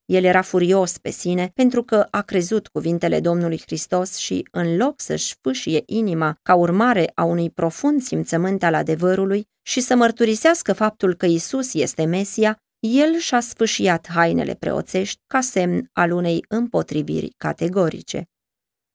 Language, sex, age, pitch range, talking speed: Romanian, female, 20-39, 165-215 Hz, 145 wpm